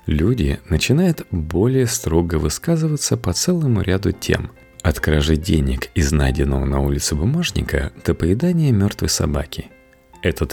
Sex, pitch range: male, 75-120 Hz